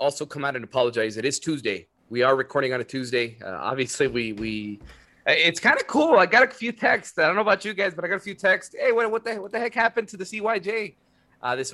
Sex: male